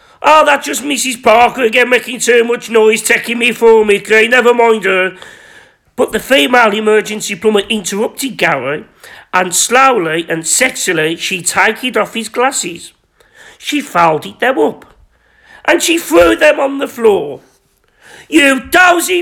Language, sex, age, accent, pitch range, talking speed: English, male, 40-59, British, 220-310 Hz, 145 wpm